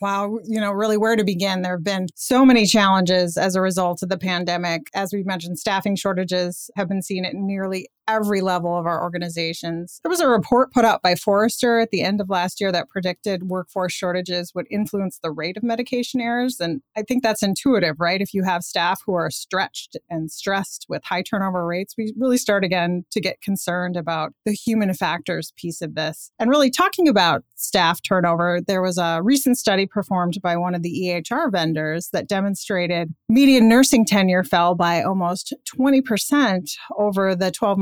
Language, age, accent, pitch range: English, 30-49, American, 175-220 Hz